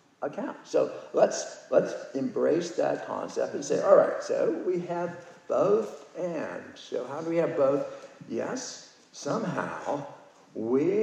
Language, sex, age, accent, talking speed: English, male, 60-79, American, 135 wpm